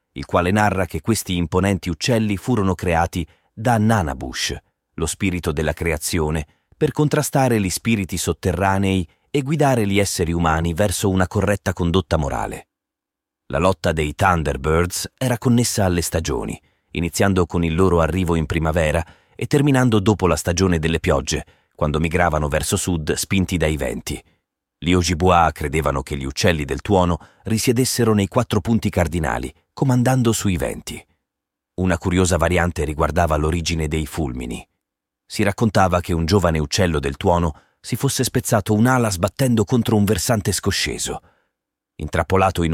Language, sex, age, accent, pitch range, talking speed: Italian, male, 30-49, native, 85-105 Hz, 140 wpm